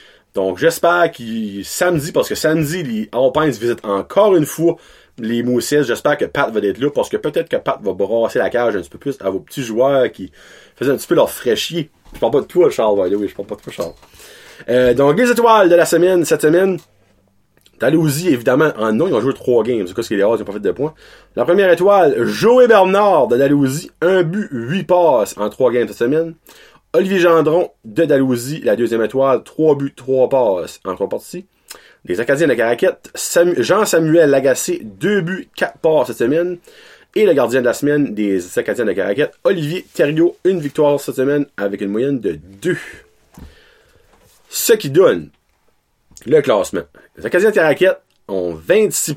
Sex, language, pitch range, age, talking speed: male, French, 130-190 Hz, 30-49, 200 wpm